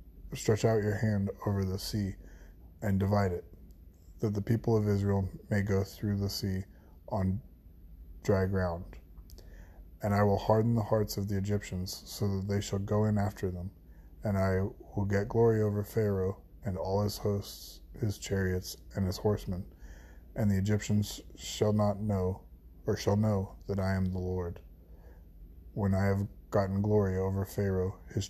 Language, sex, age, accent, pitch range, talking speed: English, male, 20-39, American, 85-105 Hz, 165 wpm